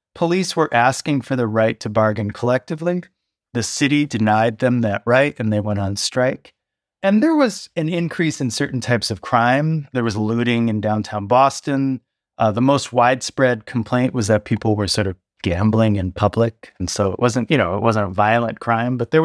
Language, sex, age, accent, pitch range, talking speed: English, male, 30-49, American, 105-145 Hz, 195 wpm